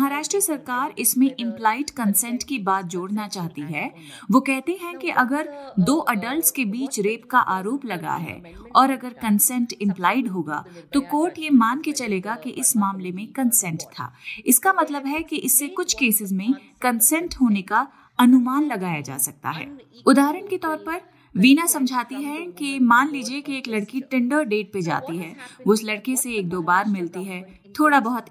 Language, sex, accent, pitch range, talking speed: Hindi, female, native, 195-270 Hz, 180 wpm